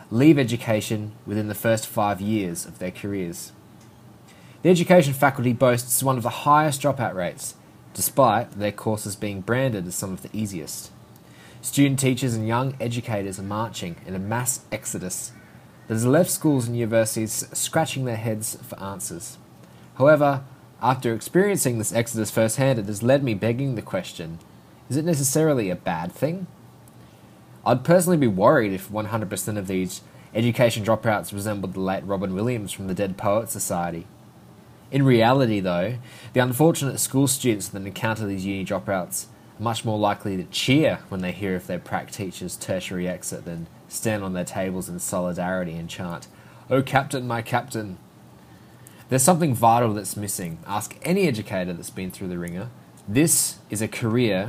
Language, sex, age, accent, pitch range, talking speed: English, male, 20-39, Australian, 95-130 Hz, 165 wpm